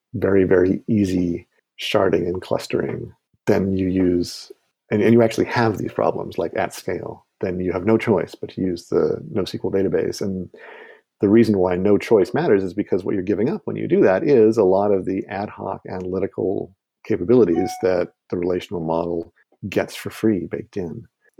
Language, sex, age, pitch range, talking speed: English, male, 50-69, 90-110 Hz, 185 wpm